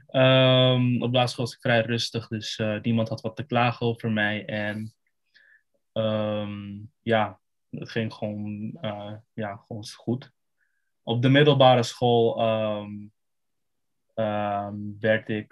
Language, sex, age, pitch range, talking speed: Dutch, male, 20-39, 110-120 Hz, 130 wpm